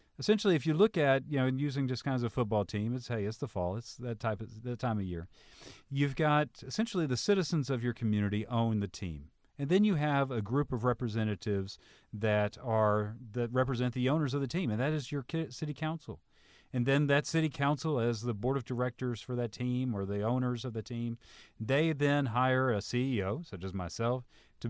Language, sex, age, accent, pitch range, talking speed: English, male, 40-59, American, 105-135 Hz, 215 wpm